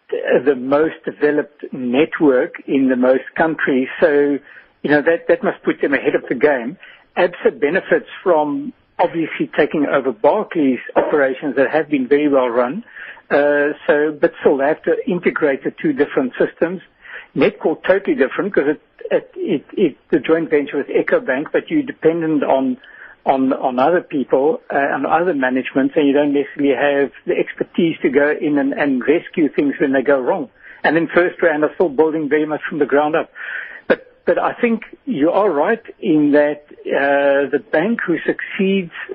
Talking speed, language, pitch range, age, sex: 180 wpm, English, 145-185 Hz, 60-79, male